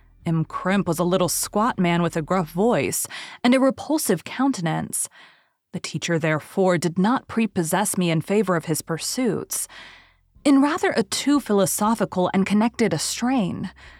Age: 30-49